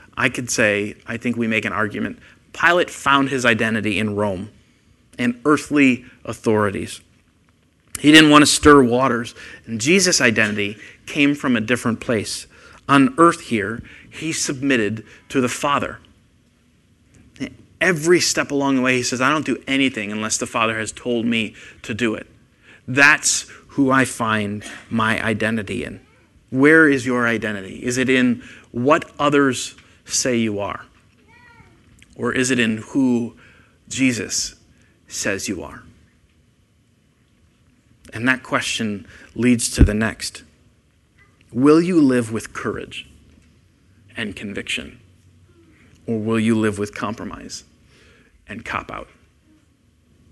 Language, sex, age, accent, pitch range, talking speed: English, male, 30-49, American, 105-130 Hz, 130 wpm